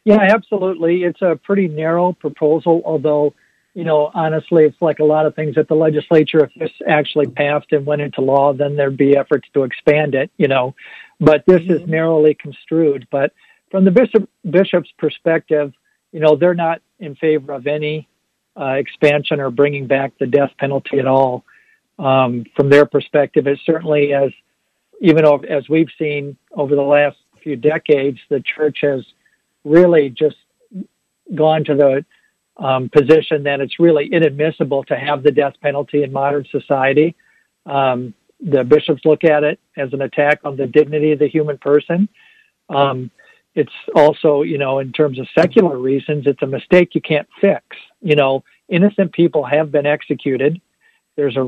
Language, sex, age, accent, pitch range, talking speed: English, male, 60-79, American, 140-165 Hz, 170 wpm